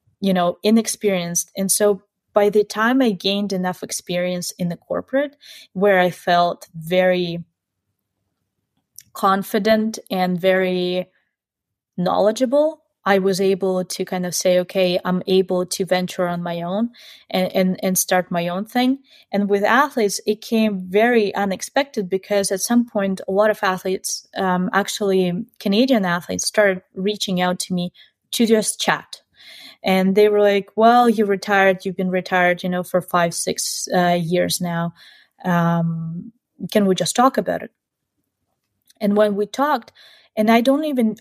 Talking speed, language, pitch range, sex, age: 155 wpm, English, 180-220 Hz, female, 20-39